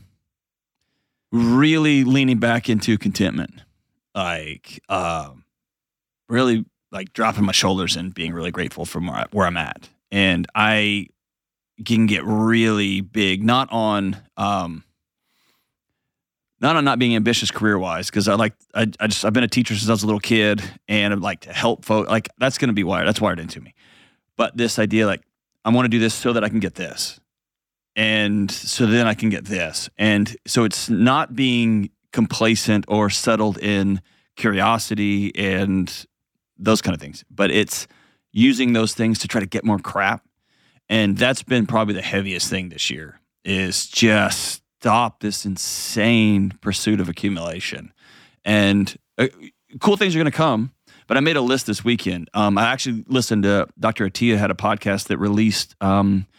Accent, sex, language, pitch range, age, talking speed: American, male, English, 100-115 Hz, 30-49, 175 wpm